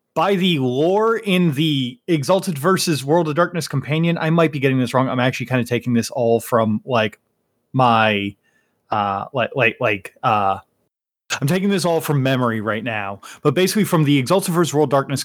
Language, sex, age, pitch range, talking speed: English, male, 30-49, 130-170 Hz, 195 wpm